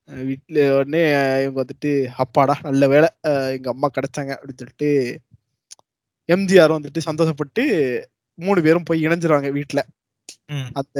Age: 20-39